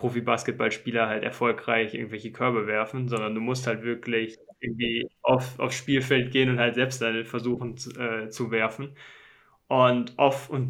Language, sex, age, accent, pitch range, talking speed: English, male, 10-29, German, 115-130 Hz, 155 wpm